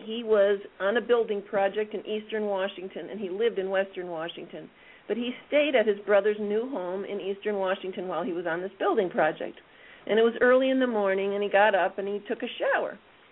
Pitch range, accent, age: 190-240 Hz, American, 50-69